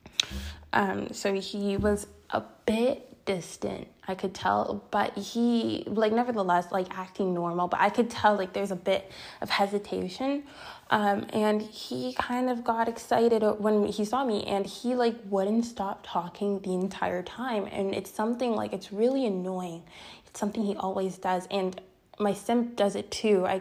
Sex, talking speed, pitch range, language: female, 170 wpm, 190-230 Hz, English